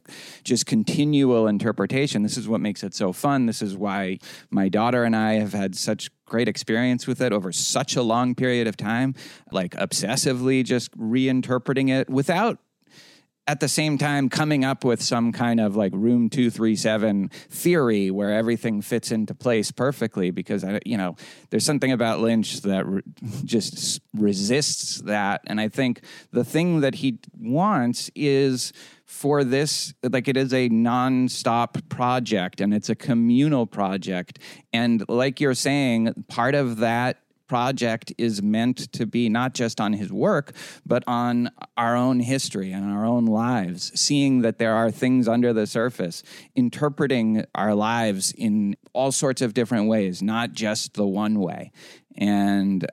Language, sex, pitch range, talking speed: English, male, 110-130 Hz, 160 wpm